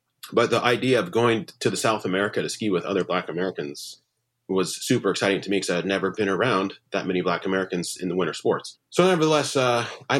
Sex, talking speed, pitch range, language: male, 225 wpm, 95-120 Hz, English